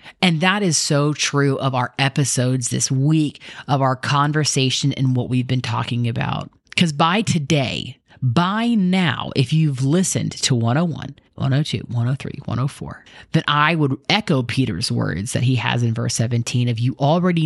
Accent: American